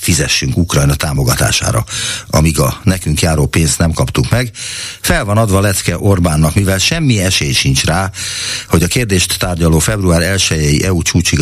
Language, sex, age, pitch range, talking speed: Hungarian, male, 60-79, 80-115 Hz, 160 wpm